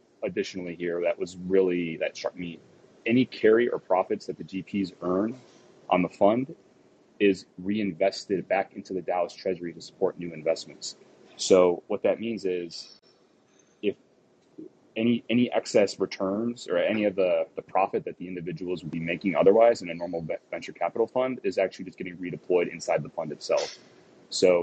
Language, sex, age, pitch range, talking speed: English, male, 30-49, 85-115 Hz, 170 wpm